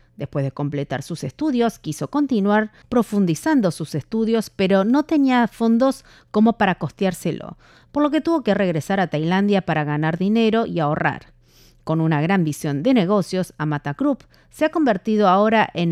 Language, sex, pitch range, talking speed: Spanish, female, 160-240 Hz, 160 wpm